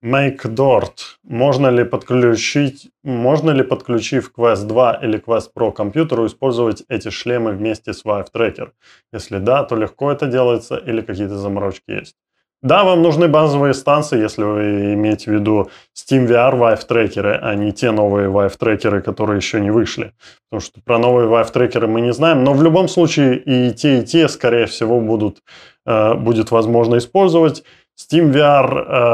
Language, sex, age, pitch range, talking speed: Russian, male, 20-39, 110-130 Hz, 155 wpm